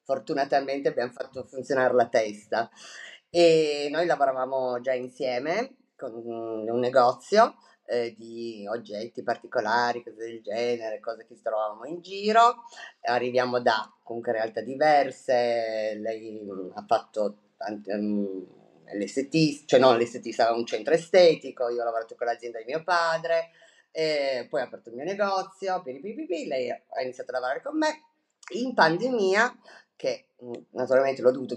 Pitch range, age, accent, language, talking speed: 120-185 Hz, 30-49, native, Italian, 140 wpm